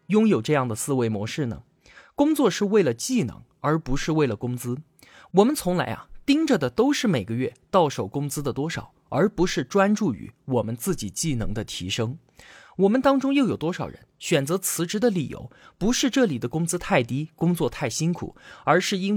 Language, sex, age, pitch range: Chinese, male, 20-39, 130-210 Hz